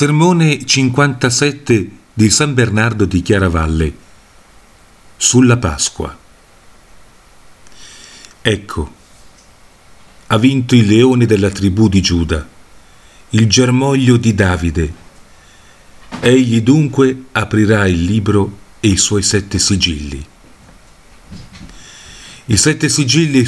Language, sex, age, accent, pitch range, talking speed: Italian, male, 50-69, native, 90-120 Hz, 90 wpm